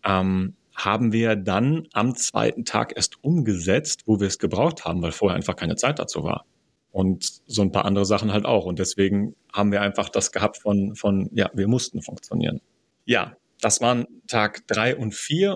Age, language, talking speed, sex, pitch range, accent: 30-49, German, 185 wpm, male, 105-120 Hz, German